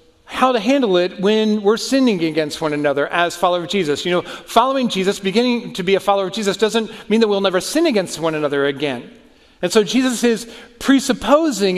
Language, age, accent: English, 40-59, American